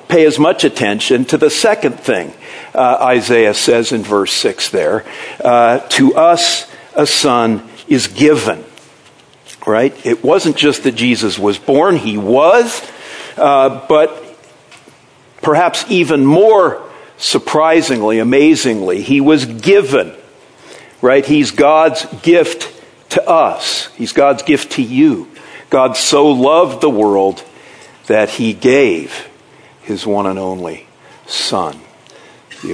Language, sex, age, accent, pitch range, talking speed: English, male, 60-79, American, 115-160 Hz, 120 wpm